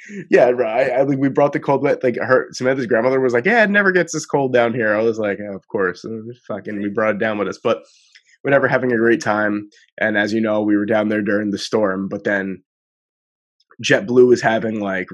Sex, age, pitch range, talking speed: male, 20-39, 100-115 Hz, 235 wpm